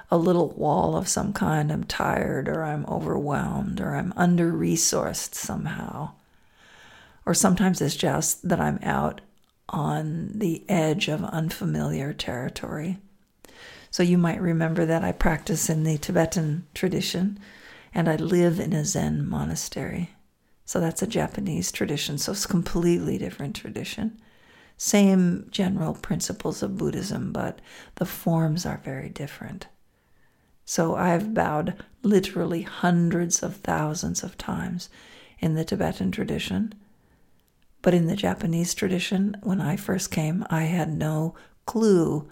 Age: 50-69